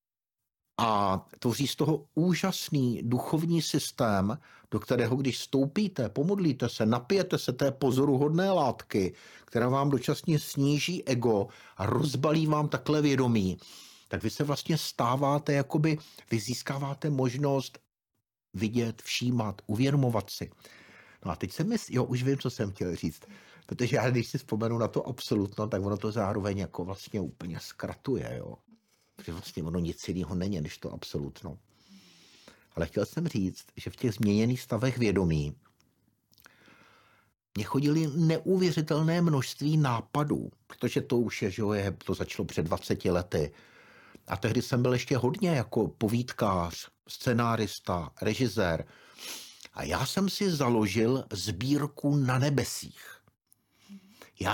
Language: Czech